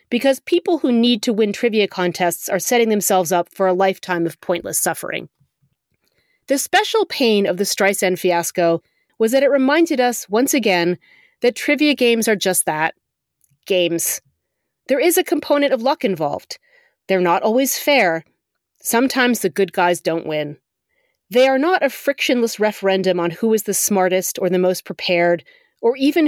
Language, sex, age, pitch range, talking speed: English, female, 30-49, 180-265 Hz, 165 wpm